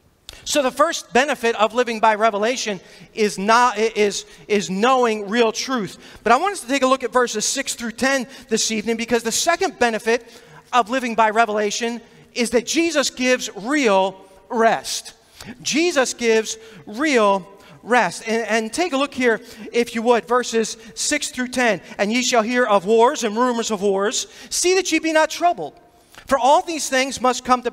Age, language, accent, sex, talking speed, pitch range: 40-59, English, American, male, 180 wpm, 210-255 Hz